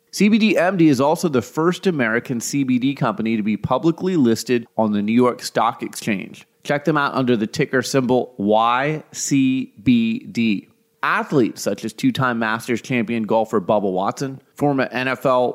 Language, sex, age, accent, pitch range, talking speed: English, male, 30-49, American, 115-150 Hz, 145 wpm